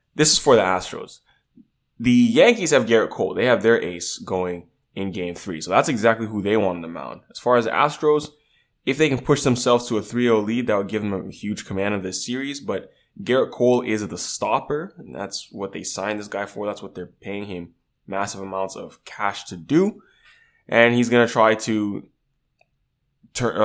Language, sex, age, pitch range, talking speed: English, male, 10-29, 95-115 Hz, 210 wpm